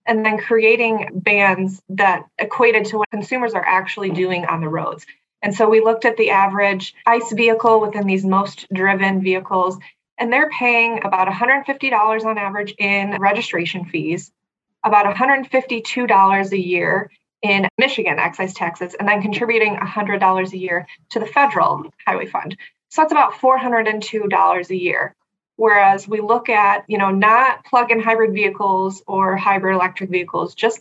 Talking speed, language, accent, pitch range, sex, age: 155 wpm, English, American, 190-225 Hz, female, 20-39